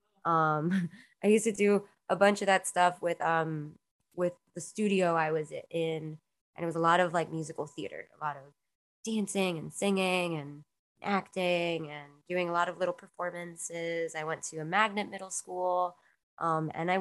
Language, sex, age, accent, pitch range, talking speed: English, female, 20-39, American, 160-190 Hz, 185 wpm